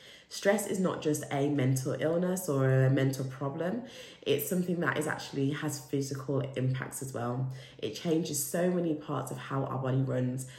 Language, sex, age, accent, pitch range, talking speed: English, female, 20-39, British, 135-165 Hz, 175 wpm